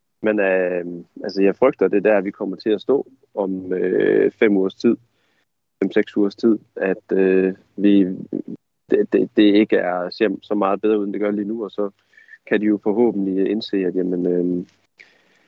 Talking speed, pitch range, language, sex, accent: 180 wpm, 95-110 Hz, Danish, male, native